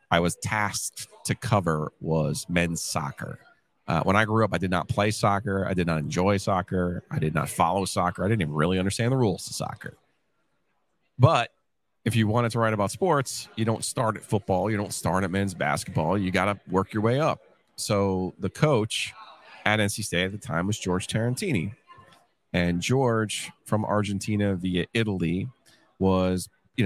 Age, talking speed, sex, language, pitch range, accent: 30-49, 185 wpm, male, English, 90-115 Hz, American